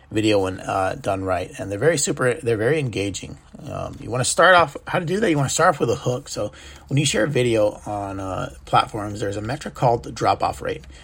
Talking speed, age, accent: 250 wpm, 30-49, American